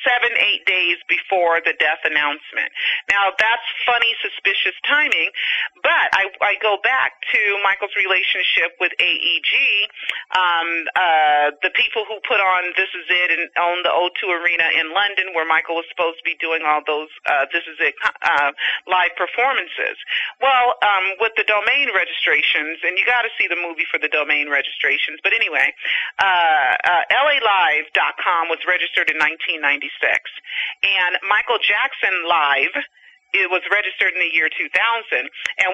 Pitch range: 180-235 Hz